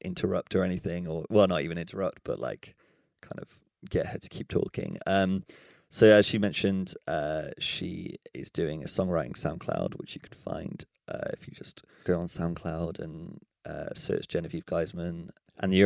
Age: 30-49